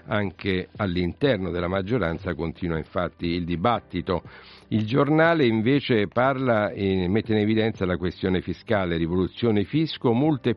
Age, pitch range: 50-69, 90-110 Hz